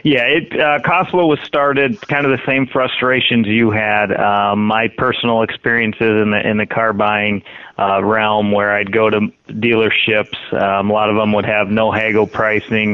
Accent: American